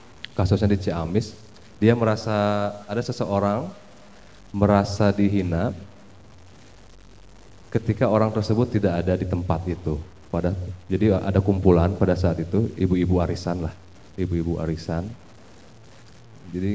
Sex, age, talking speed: male, 30-49, 110 wpm